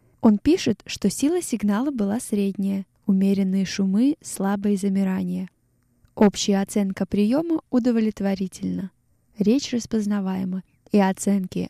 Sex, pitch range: female, 190-220 Hz